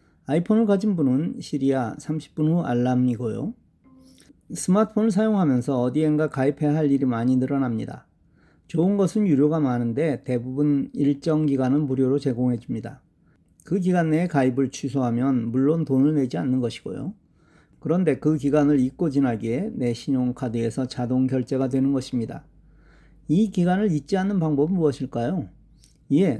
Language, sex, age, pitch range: Korean, male, 40-59, 125-160 Hz